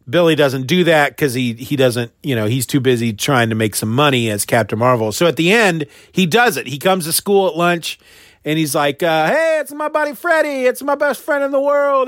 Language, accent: English, American